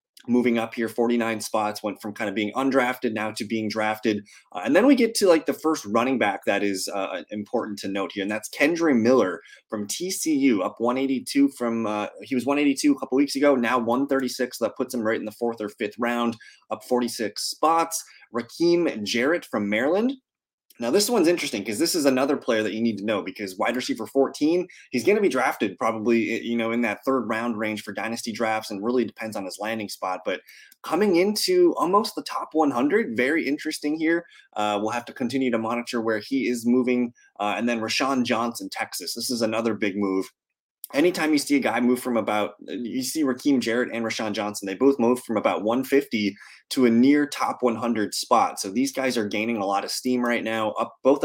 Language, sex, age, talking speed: English, male, 20-39, 210 wpm